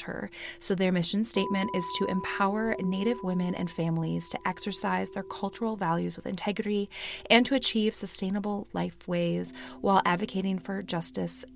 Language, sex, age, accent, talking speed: English, female, 20-39, American, 145 wpm